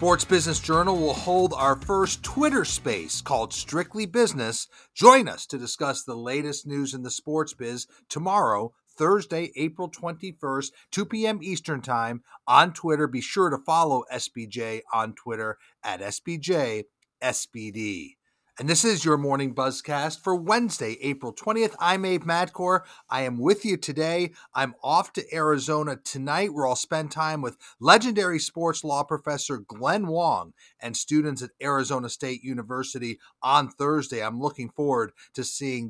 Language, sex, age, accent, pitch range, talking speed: English, male, 40-59, American, 130-175 Hz, 150 wpm